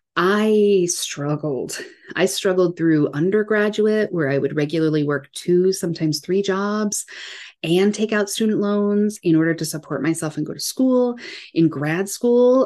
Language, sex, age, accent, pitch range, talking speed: English, female, 30-49, American, 150-205 Hz, 150 wpm